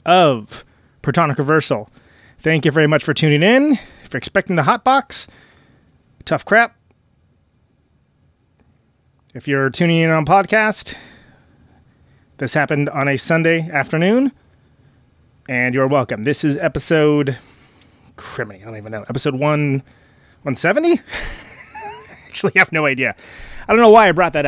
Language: English